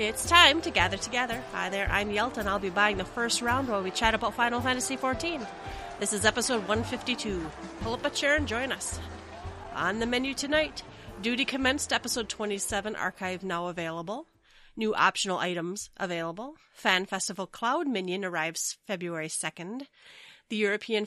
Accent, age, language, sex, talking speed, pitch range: American, 30-49, English, female, 165 wpm, 190-250 Hz